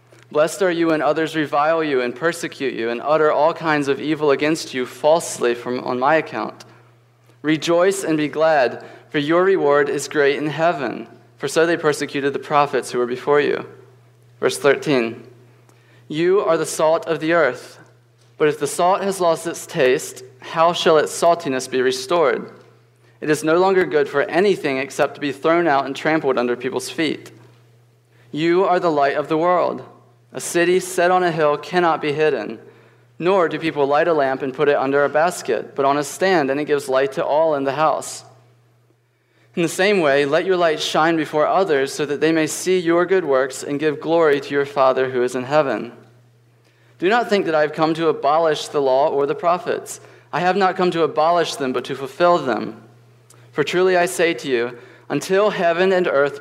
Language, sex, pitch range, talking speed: English, male, 125-165 Hz, 200 wpm